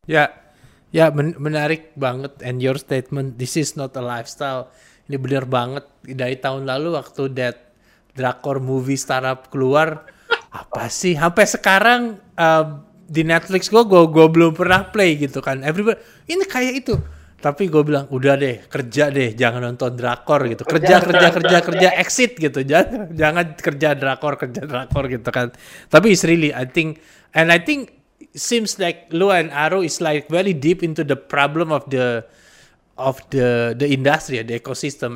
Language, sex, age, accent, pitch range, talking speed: Indonesian, male, 20-39, native, 130-175 Hz, 165 wpm